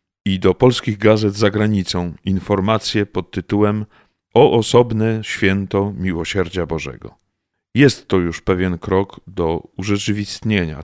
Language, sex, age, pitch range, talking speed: Polish, male, 40-59, 90-110 Hz, 115 wpm